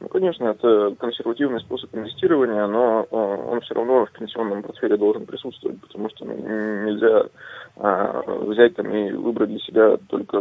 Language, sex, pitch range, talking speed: Russian, male, 110-130 Hz, 140 wpm